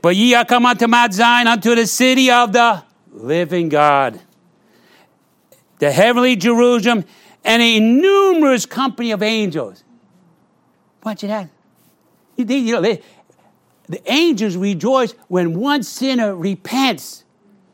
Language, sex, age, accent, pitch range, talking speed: English, male, 60-79, American, 165-230 Hz, 110 wpm